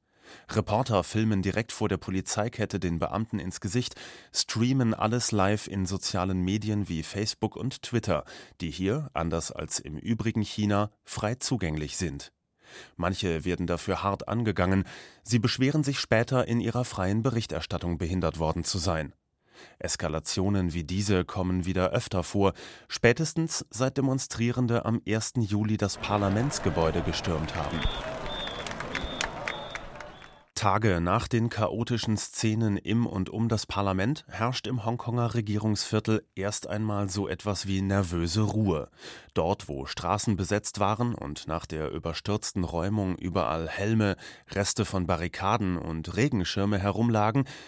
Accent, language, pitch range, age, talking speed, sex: German, German, 90-115 Hz, 30-49, 130 wpm, male